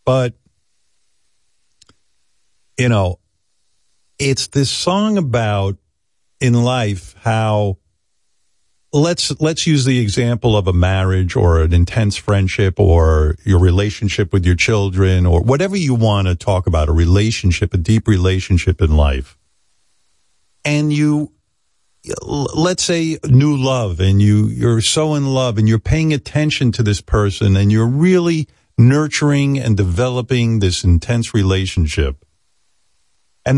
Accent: American